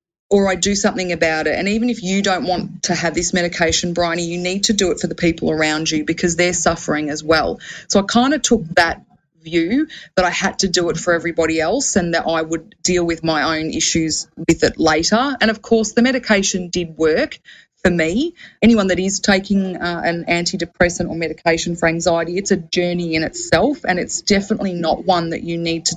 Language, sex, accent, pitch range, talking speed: English, female, Australian, 165-200 Hz, 215 wpm